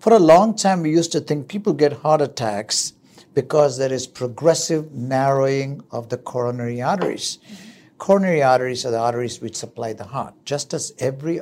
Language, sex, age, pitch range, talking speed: English, male, 50-69, 135-185 Hz, 175 wpm